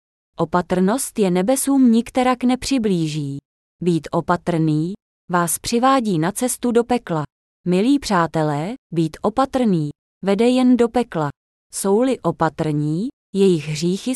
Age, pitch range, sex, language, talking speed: 20-39, 170-250 Hz, female, Czech, 105 wpm